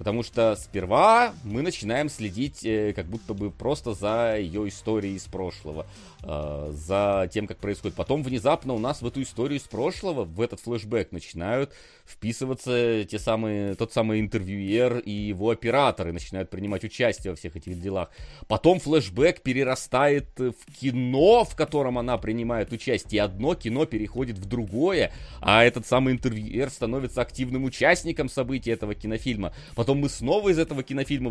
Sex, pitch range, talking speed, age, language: male, 105-135 Hz, 150 wpm, 30-49, Russian